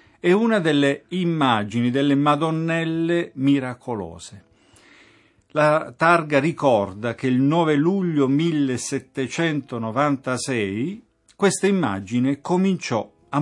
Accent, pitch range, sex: native, 115-155 Hz, male